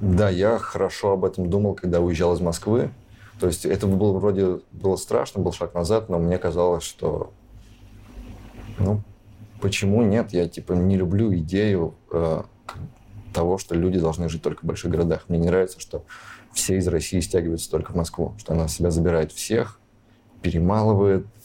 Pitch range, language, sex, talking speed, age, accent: 85-105 Hz, Russian, male, 165 wpm, 20-39, native